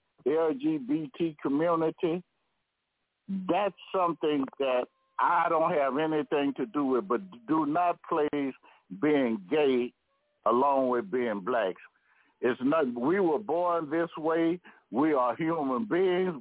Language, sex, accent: English, male, American